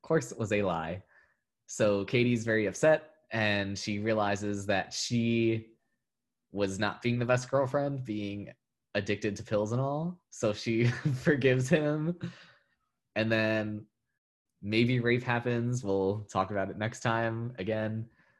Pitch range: 100-120 Hz